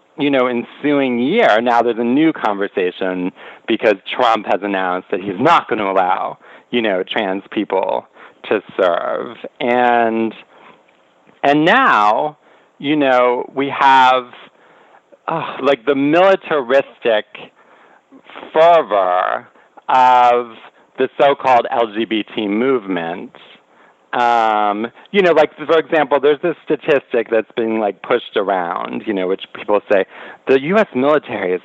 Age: 40-59